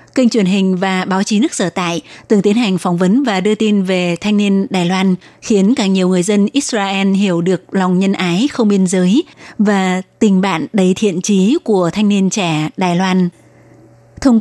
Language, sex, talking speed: Vietnamese, female, 205 wpm